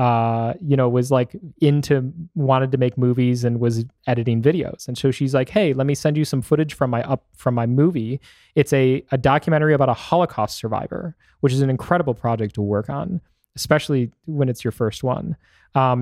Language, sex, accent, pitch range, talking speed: English, male, American, 125-145 Hz, 200 wpm